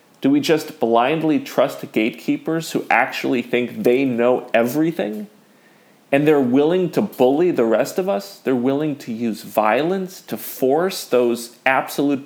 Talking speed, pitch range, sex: 145 wpm, 120-165 Hz, male